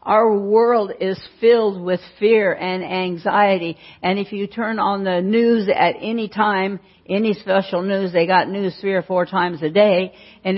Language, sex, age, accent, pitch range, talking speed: English, female, 60-79, American, 175-210 Hz, 175 wpm